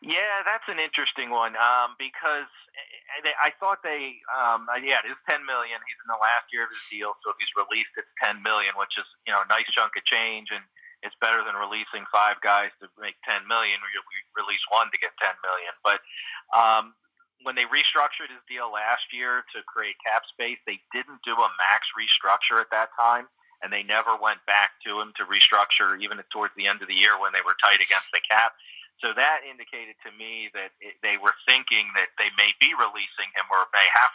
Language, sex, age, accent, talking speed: English, male, 30-49, American, 215 wpm